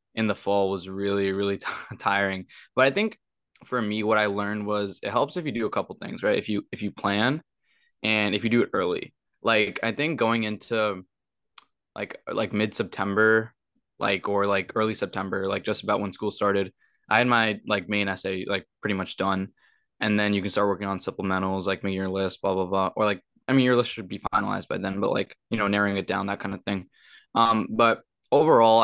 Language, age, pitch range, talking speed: English, 10-29, 100-110 Hz, 225 wpm